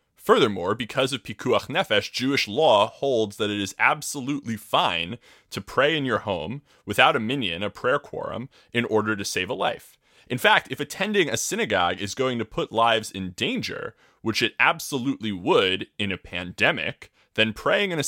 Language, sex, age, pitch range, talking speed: English, male, 20-39, 105-135 Hz, 180 wpm